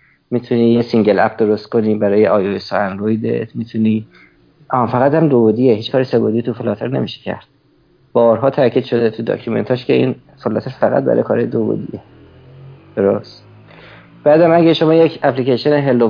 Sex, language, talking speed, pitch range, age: male, Persian, 170 wpm, 110-135 Hz, 50-69